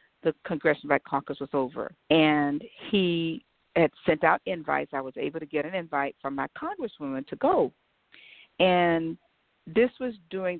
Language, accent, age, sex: English, American, 50-69, female